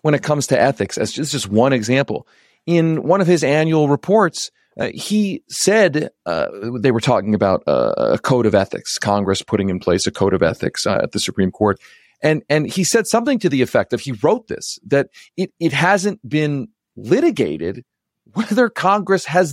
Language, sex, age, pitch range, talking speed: English, male, 40-59, 120-190 Hz, 195 wpm